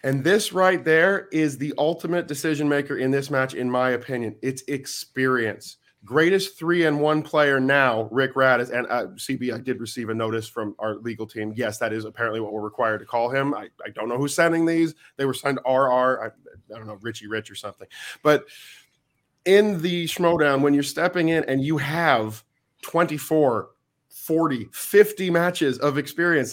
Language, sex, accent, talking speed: English, male, American, 185 wpm